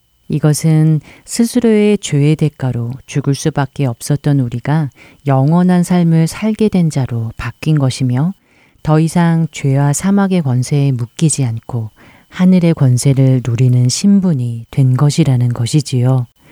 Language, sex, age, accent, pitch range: Korean, female, 40-59, native, 125-155 Hz